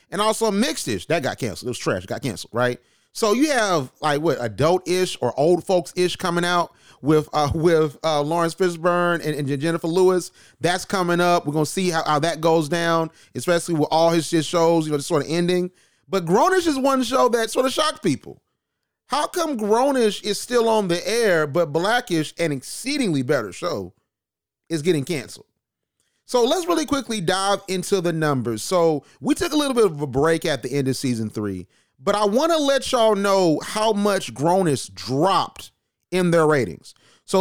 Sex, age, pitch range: male, 30-49, 155-220 Hz